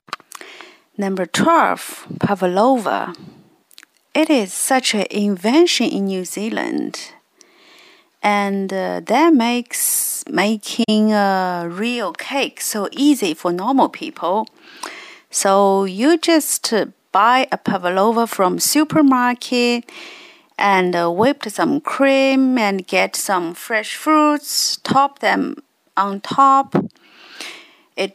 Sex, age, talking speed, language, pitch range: female, 40-59, 105 wpm, English, 190-310 Hz